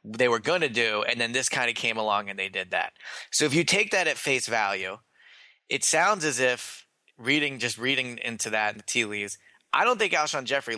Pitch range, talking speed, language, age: 110-140 Hz, 235 wpm, English, 20-39